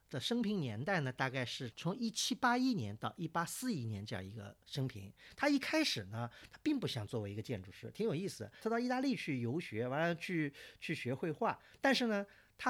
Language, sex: Chinese, male